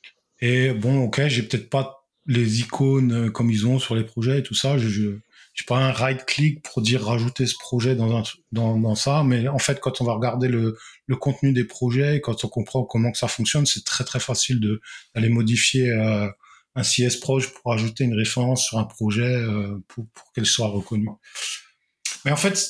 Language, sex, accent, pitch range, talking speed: French, male, French, 120-140 Hz, 215 wpm